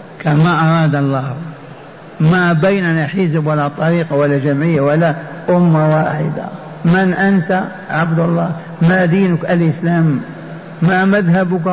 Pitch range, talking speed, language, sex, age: 160-185 Hz, 115 wpm, Arabic, male, 60-79